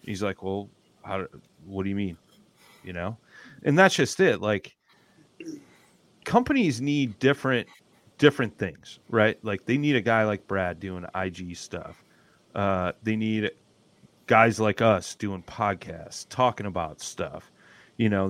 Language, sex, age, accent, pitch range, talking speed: English, male, 30-49, American, 95-120 Hz, 145 wpm